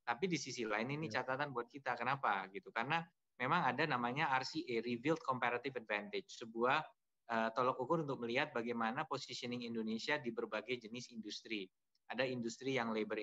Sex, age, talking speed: male, 20-39, 160 wpm